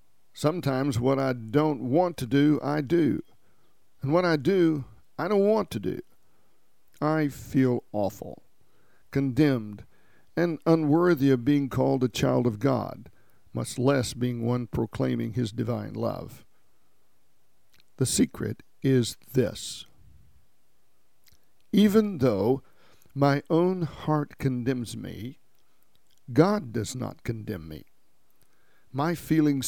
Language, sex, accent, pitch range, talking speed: English, male, American, 120-150 Hz, 115 wpm